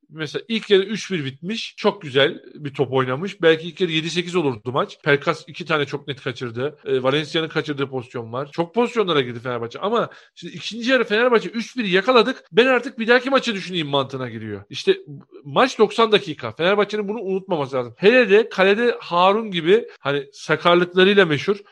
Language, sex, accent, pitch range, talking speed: Turkish, male, native, 150-220 Hz, 170 wpm